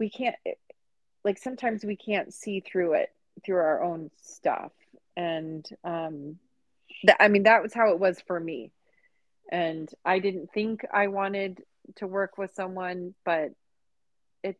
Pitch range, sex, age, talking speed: 170-215 Hz, female, 30-49, 150 wpm